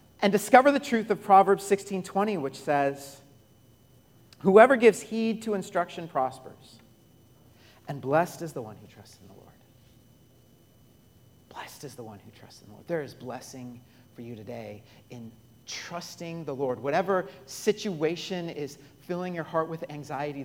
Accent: American